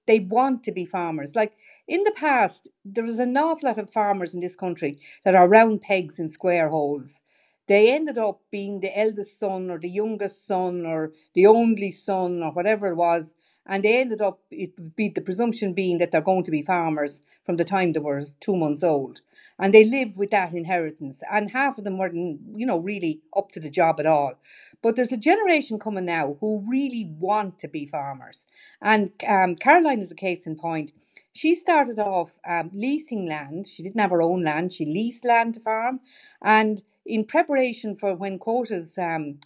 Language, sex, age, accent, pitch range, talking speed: English, female, 50-69, Irish, 175-220 Hz, 200 wpm